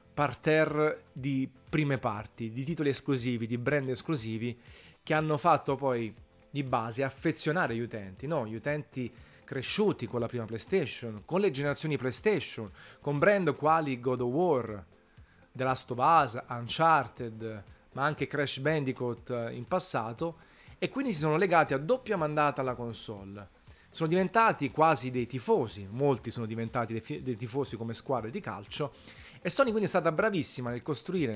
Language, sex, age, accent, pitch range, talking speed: Italian, male, 30-49, native, 120-155 Hz, 155 wpm